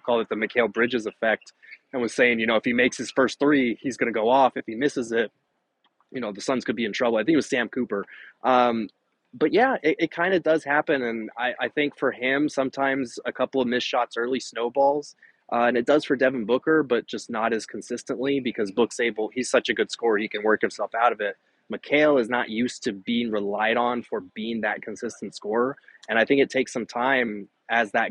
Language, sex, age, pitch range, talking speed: English, male, 20-39, 110-130 Hz, 240 wpm